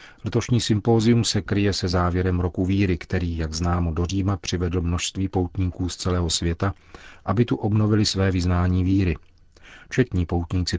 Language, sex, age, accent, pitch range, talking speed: Czech, male, 40-59, native, 85-100 Hz, 145 wpm